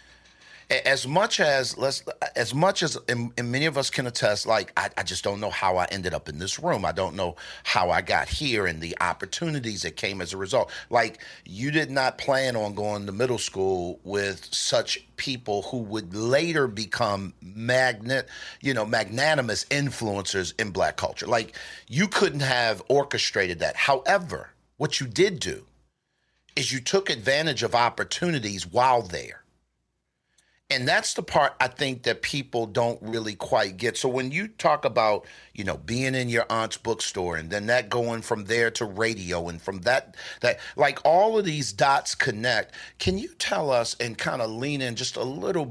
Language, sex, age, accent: English, male, 50-69, American